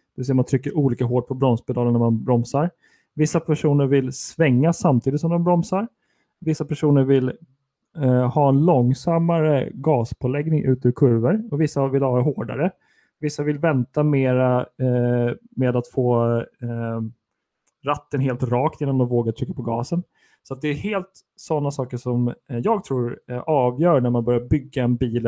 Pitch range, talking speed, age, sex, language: 120-150 Hz, 175 wpm, 30-49, male, Swedish